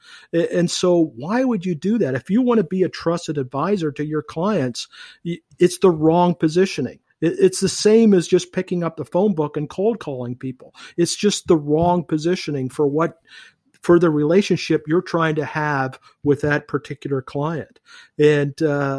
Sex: male